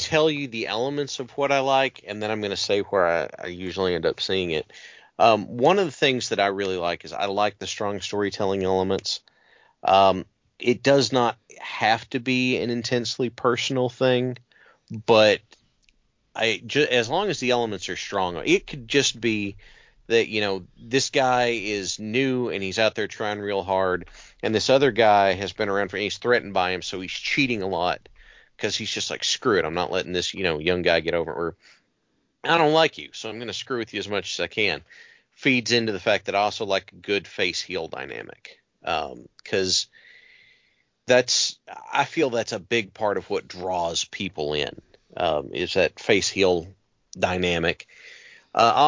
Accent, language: American, English